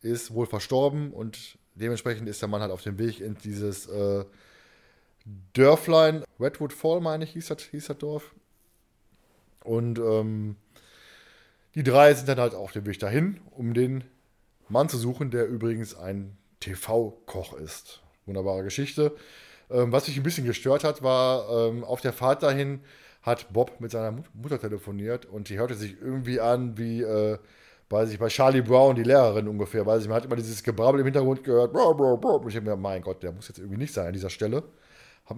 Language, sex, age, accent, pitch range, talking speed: German, male, 20-39, German, 110-145 Hz, 190 wpm